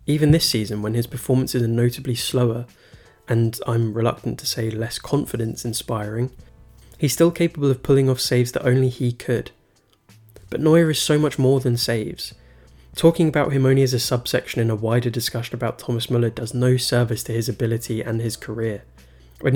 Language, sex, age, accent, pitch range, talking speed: English, male, 20-39, British, 115-130 Hz, 180 wpm